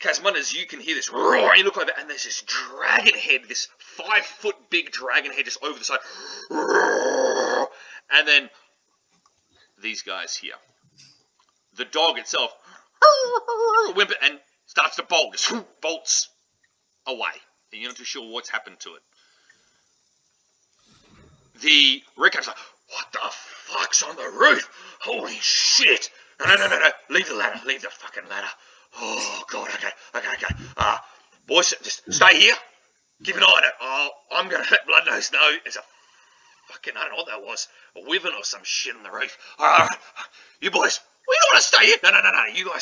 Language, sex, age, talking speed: English, male, 40-59, 180 wpm